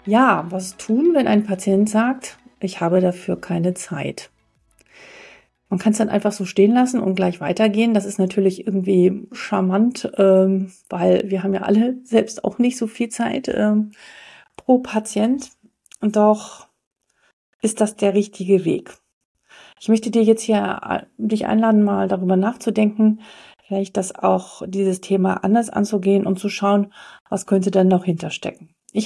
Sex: female